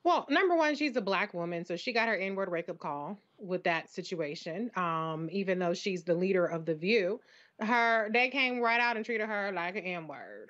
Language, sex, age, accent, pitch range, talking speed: English, female, 30-49, American, 180-225 Hz, 210 wpm